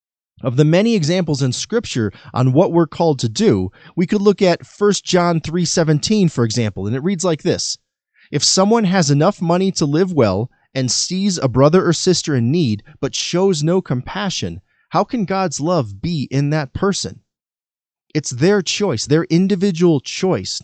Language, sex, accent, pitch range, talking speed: English, male, American, 125-175 Hz, 175 wpm